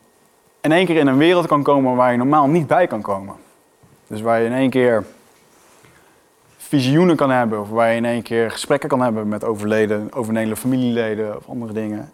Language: Dutch